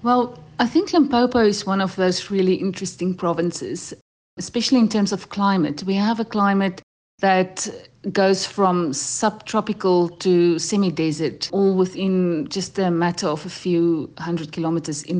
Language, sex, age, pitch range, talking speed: English, female, 50-69, 175-210 Hz, 150 wpm